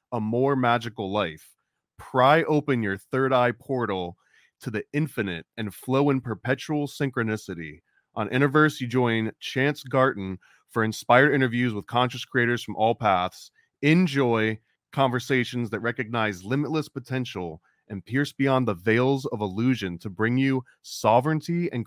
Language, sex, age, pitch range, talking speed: English, male, 30-49, 110-135 Hz, 135 wpm